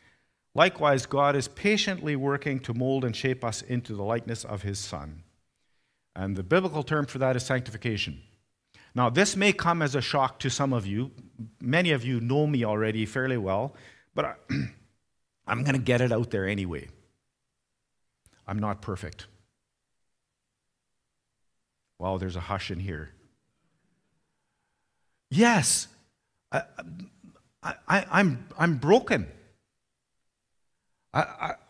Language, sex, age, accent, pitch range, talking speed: English, male, 50-69, American, 110-175 Hz, 135 wpm